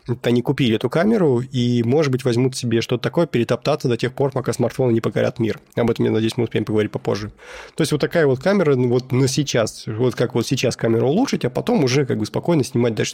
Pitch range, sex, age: 115-135 Hz, male, 20-39